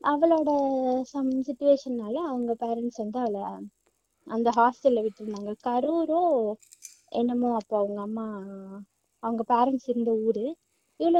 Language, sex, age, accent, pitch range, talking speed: Tamil, female, 20-39, native, 220-285 Hz, 105 wpm